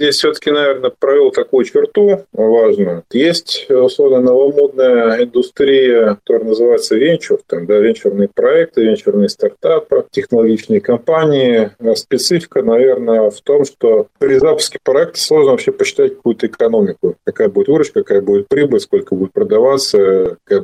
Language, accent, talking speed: Russian, native, 130 wpm